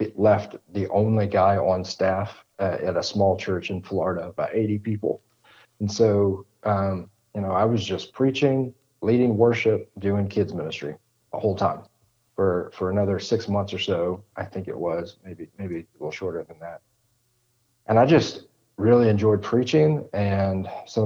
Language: English